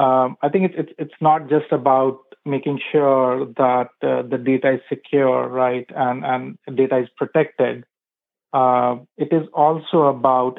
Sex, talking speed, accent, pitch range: male, 160 wpm, Indian, 130-150 Hz